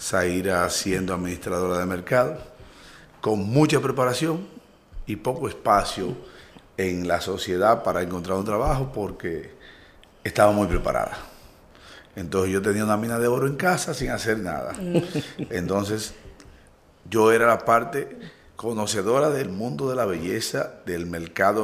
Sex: male